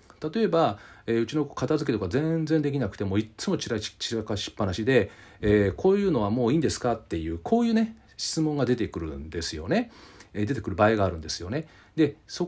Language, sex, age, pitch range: Japanese, male, 40-59, 105-175 Hz